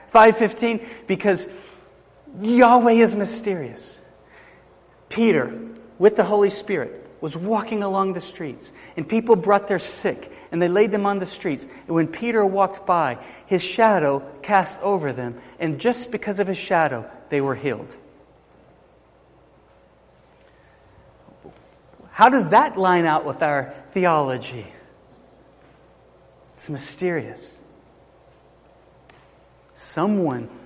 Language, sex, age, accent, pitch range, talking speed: English, male, 40-59, American, 145-205 Hz, 110 wpm